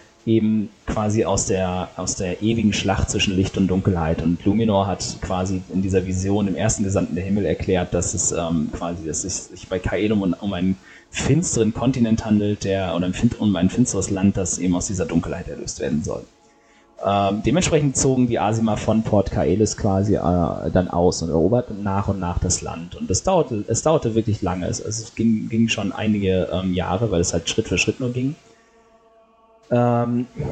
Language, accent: German, German